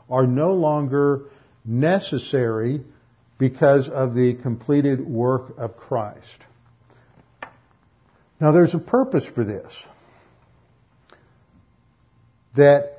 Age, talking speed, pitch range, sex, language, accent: 50-69, 85 wpm, 125-160 Hz, male, English, American